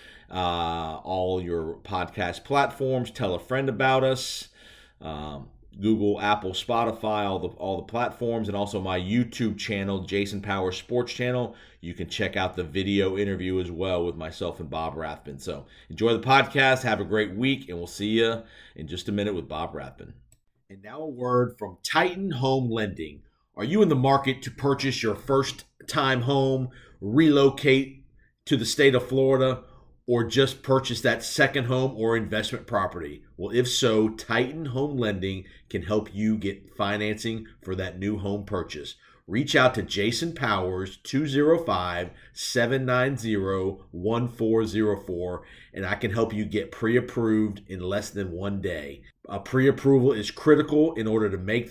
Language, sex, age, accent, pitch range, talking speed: English, male, 40-59, American, 95-125 Hz, 160 wpm